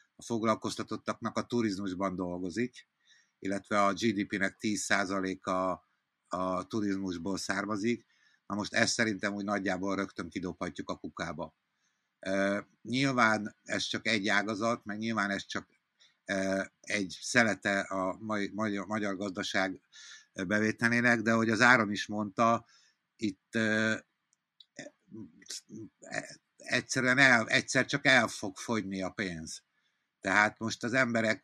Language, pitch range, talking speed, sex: Hungarian, 100-115 Hz, 105 wpm, male